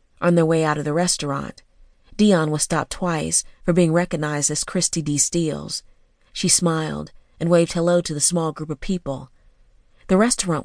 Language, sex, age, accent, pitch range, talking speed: English, female, 40-59, American, 150-180 Hz, 175 wpm